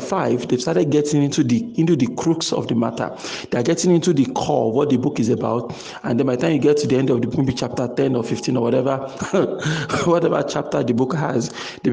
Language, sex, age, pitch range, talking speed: English, male, 40-59, 125-165 Hz, 240 wpm